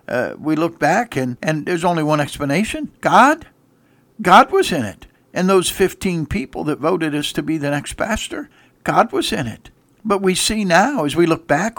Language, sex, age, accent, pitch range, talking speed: English, male, 60-79, American, 145-190 Hz, 200 wpm